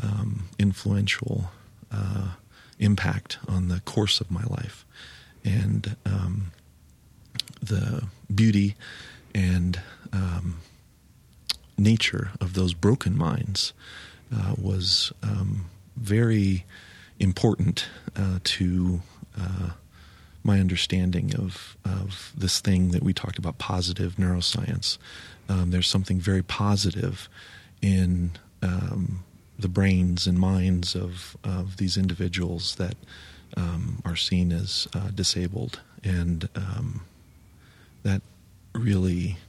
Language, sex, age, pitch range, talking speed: English, male, 40-59, 90-105 Hz, 100 wpm